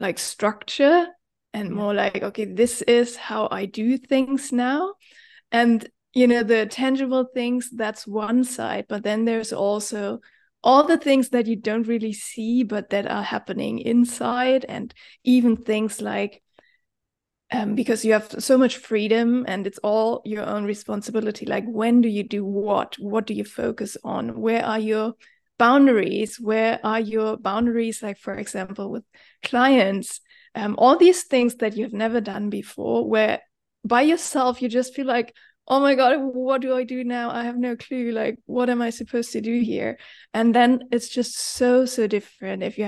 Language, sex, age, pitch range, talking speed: English, female, 20-39, 215-255 Hz, 175 wpm